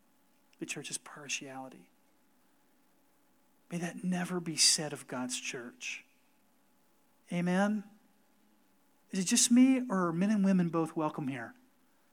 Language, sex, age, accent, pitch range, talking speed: English, male, 40-59, American, 165-265 Hz, 120 wpm